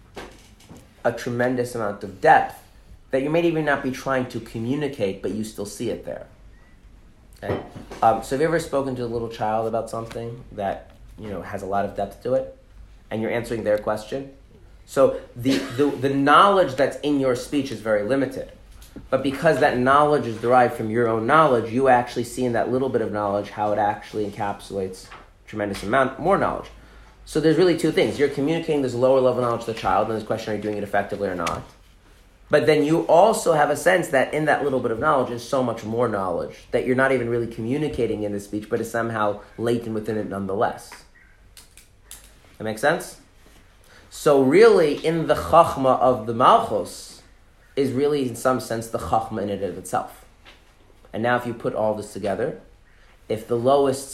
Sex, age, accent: male, 30-49, American